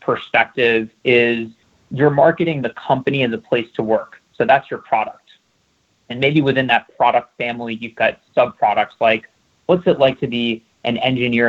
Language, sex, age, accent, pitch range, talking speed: English, male, 30-49, American, 115-140 Hz, 170 wpm